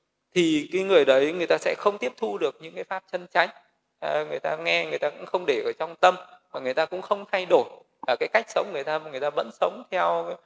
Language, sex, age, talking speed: Vietnamese, male, 20-39, 265 wpm